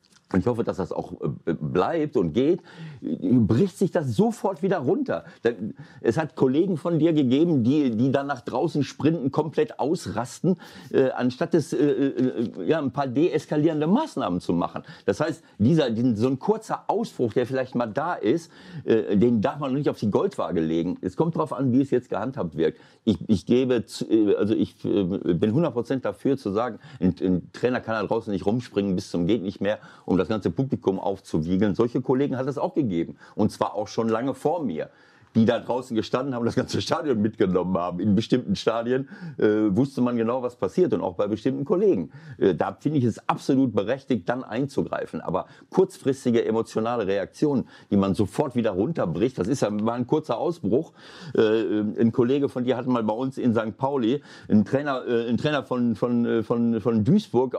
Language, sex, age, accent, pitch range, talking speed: German, male, 60-79, German, 115-140 Hz, 180 wpm